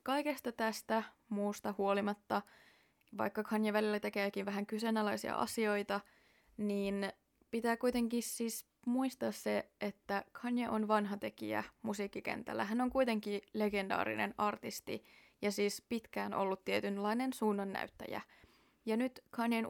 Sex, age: female, 20-39